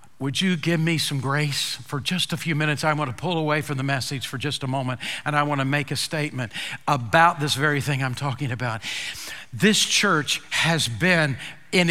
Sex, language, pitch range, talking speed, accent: male, English, 150-200 Hz, 210 wpm, American